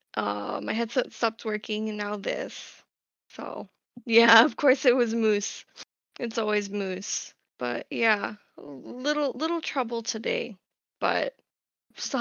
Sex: female